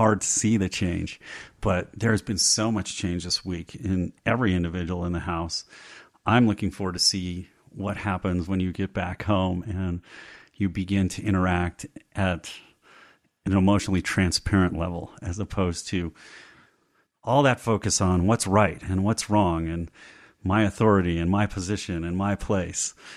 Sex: male